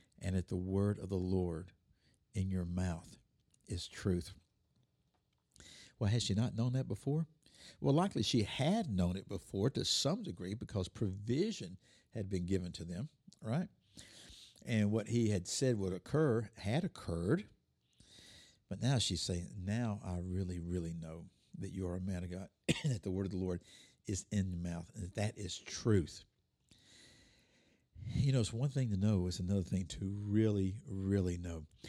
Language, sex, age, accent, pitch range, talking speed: English, male, 60-79, American, 90-110 Hz, 170 wpm